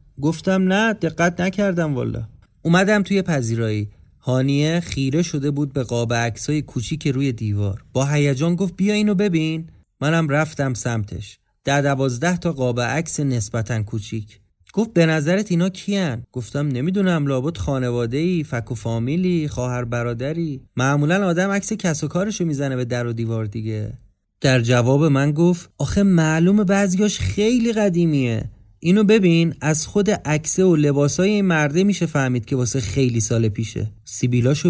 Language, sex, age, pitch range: Persian, male, 30-49, 120-165 Hz